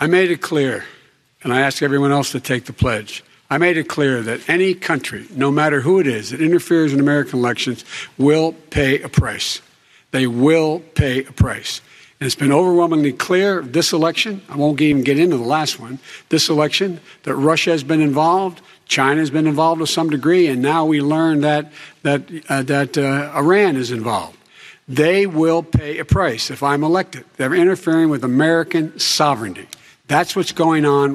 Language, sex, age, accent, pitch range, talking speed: English, male, 60-79, American, 140-170 Hz, 185 wpm